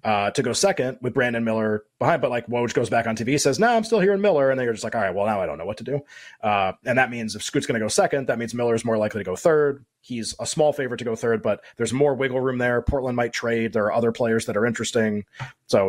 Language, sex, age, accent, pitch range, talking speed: English, male, 30-49, American, 115-145 Hz, 295 wpm